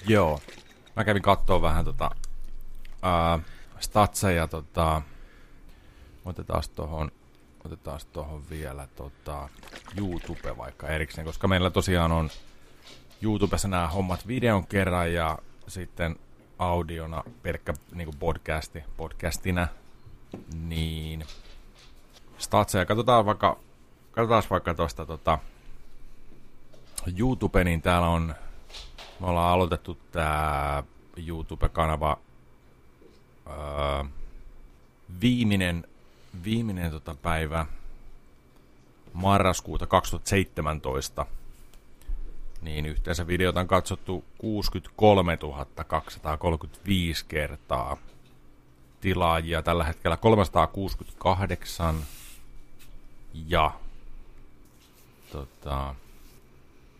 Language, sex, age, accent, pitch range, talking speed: Finnish, male, 30-49, native, 75-90 Hz, 70 wpm